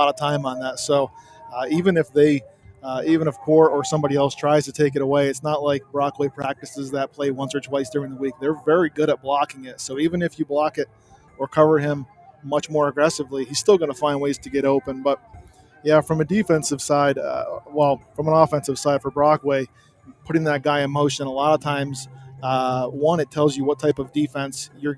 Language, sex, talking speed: English, male, 230 wpm